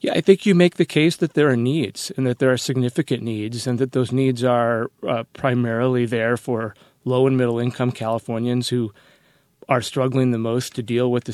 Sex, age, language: male, 30-49, English